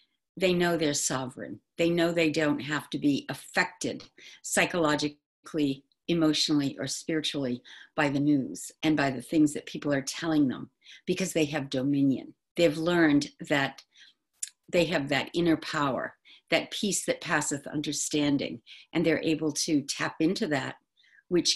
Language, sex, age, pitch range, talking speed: English, female, 50-69, 140-175 Hz, 150 wpm